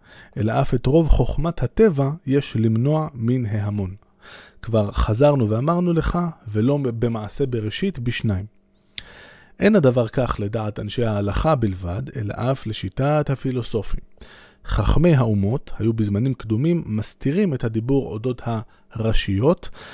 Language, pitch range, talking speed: Hebrew, 110-145 Hz, 115 wpm